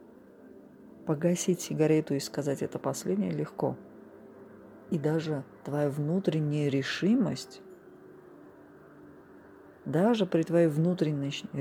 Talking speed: 85 wpm